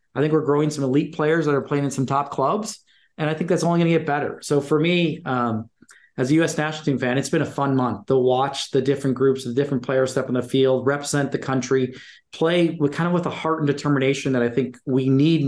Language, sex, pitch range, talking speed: English, male, 130-155 Hz, 260 wpm